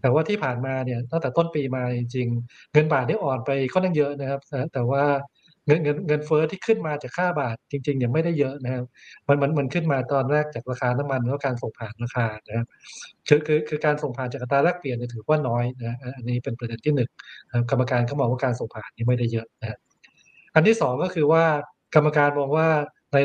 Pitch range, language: 125-150 Hz, Thai